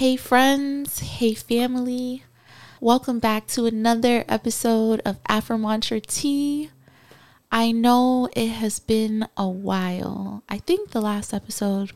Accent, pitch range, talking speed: American, 195-240 Hz, 120 wpm